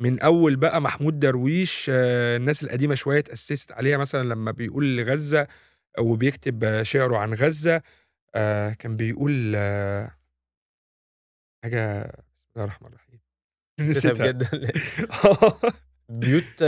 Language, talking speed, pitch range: Arabic, 115 wpm, 105-145 Hz